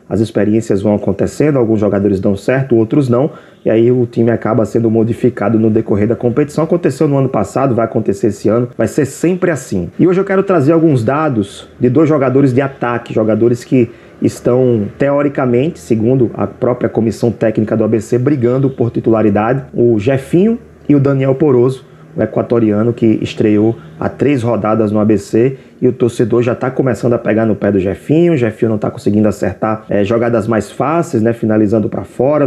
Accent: Brazilian